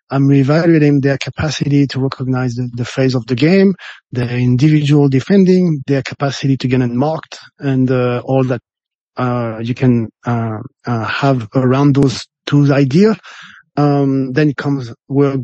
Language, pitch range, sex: French, 130-150 Hz, male